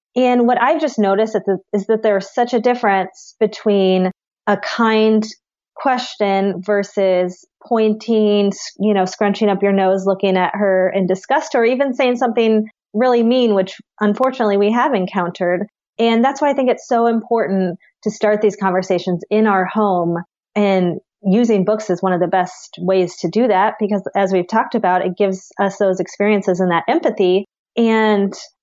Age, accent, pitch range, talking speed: 30-49, American, 190-230 Hz, 170 wpm